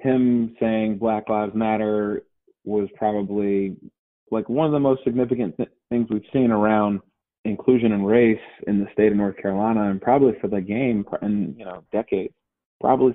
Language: English